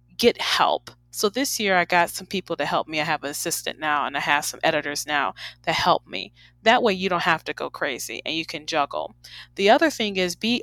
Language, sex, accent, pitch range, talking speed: English, female, American, 155-195 Hz, 245 wpm